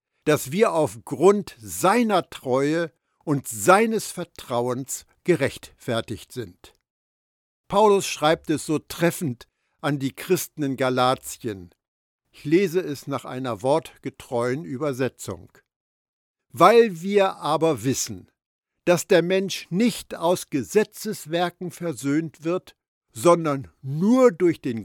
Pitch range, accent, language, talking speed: 125-180 Hz, German, German, 105 wpm